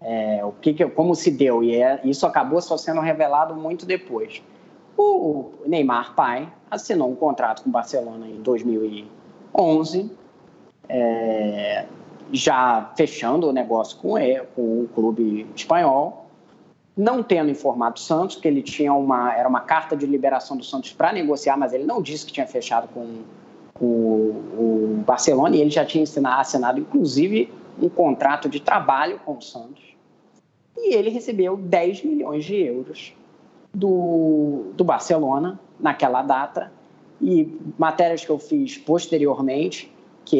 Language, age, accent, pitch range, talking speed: Portuguese, 20-39, Brazilian, 125-185 Hz, 135 wpm